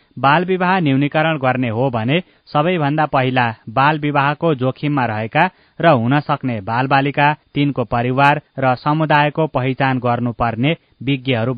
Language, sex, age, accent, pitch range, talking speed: English, male, 20-39, Indian, 125-150 Hz, 135 wpm